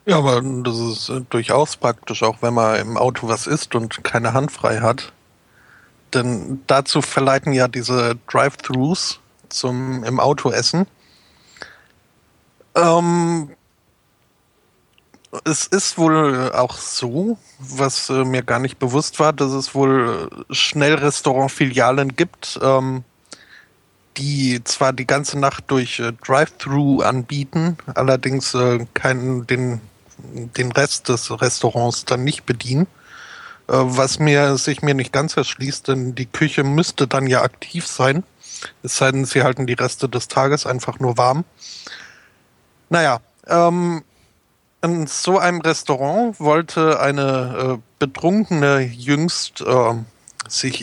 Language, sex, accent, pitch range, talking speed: German, male, German, 125-145 Hz, 125 wpm